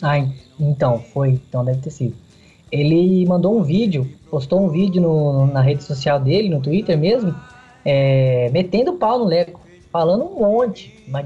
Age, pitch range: 10-29, 150-210 Hz